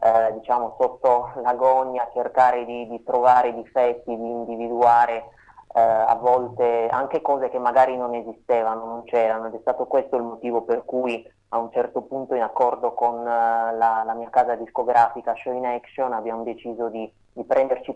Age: 20-39